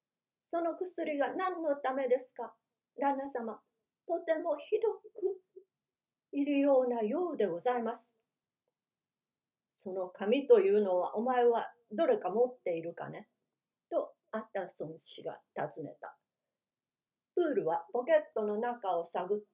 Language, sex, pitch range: Japanese, female, 205-290 Hz